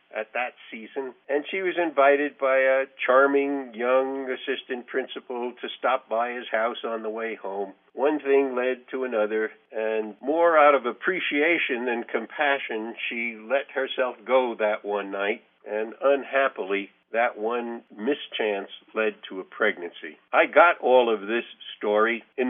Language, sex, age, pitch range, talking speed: English, male, 50-69, 110-135 Hz, 150 wpm